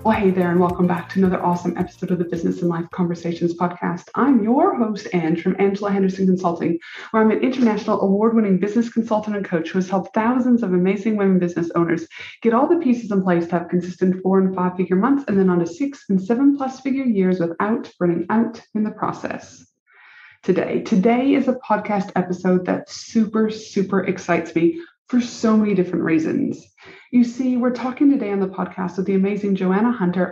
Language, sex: English, female